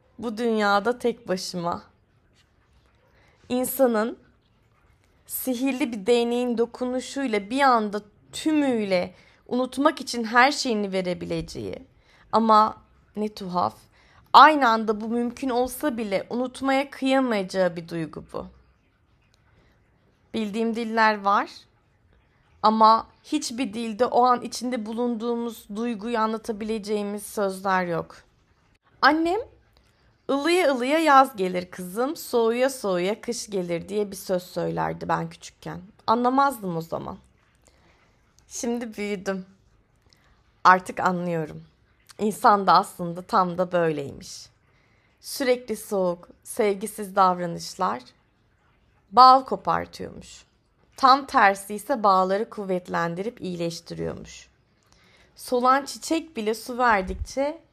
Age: 30-49